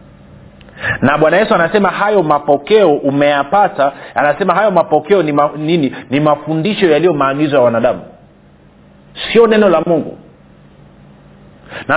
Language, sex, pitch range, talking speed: Swahili, male, 145-190 Hz, 120 wpm